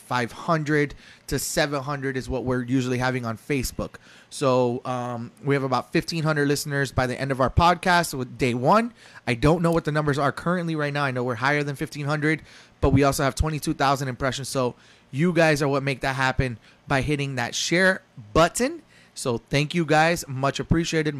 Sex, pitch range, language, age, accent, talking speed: male, 135-220 Hz, English, 30-49, American, 190 wpm